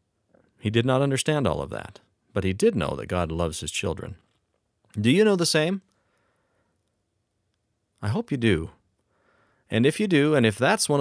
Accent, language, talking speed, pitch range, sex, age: American, English, 180 wpm, 95-130 Hz, male, 30-49